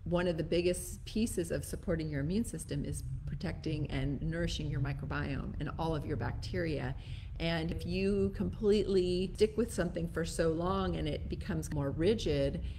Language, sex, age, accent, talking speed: English, female, 30-49, American, 170 wpm